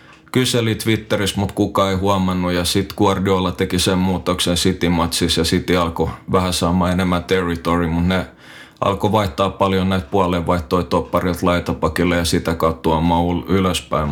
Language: Finnish